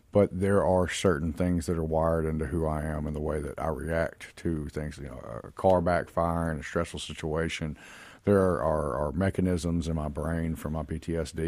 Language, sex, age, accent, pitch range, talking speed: English, male, 40-59, American, 80-95 Hz, 200 wpm